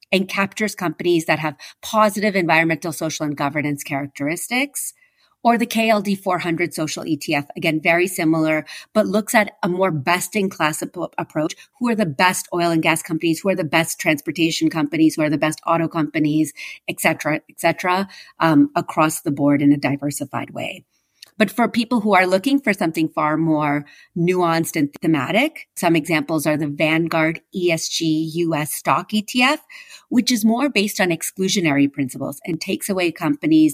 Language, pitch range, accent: English, 155-190 Hz, American